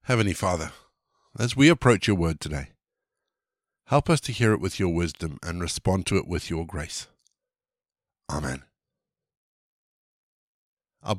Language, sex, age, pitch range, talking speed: English, male, 50-69, 90-125 Hz, 135 wpm